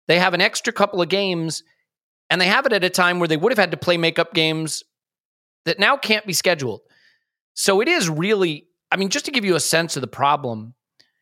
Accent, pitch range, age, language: American, 140-190 Hz, 30-49, English